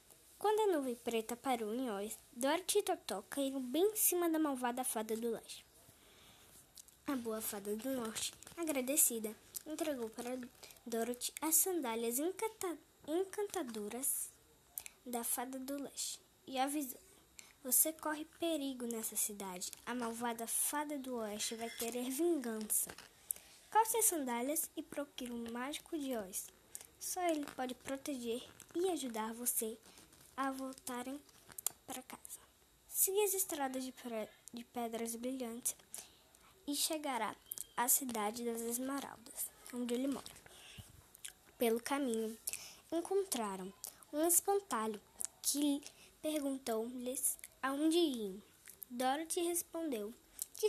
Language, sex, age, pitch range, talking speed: Portuguese, female, 10-29, 230-305 Hz, 115 wpm